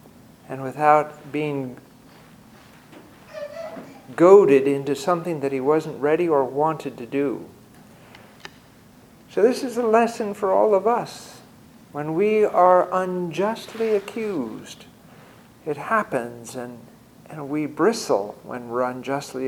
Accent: American